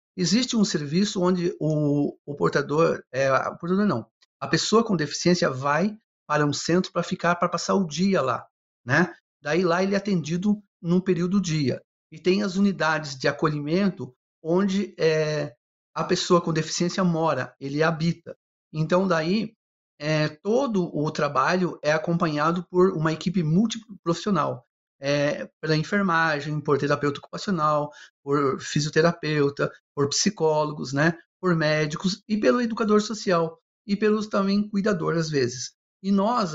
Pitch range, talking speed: 155-190 Hz, 145 wpm